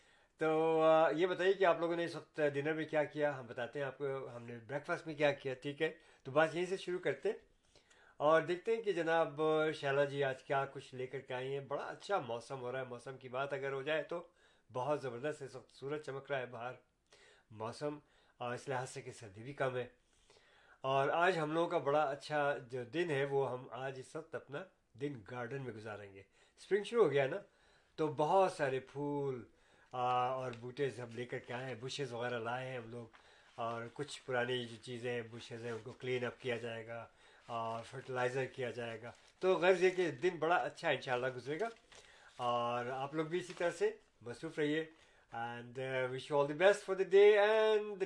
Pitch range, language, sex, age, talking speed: 125-165 Hz, Urdu, male, 50-69, 210 wpm